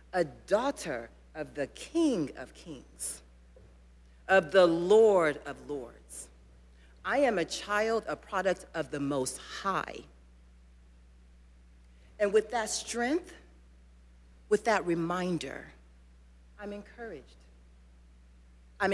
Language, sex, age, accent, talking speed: English, female, 40-59, American, 100 wpm